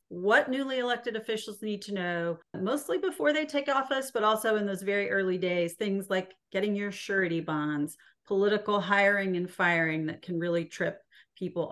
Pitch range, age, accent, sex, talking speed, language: 175-210 Hz, 40-59, American, female, 175 wpm, English